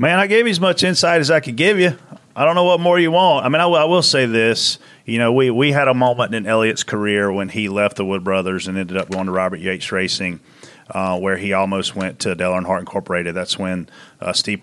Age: 30-49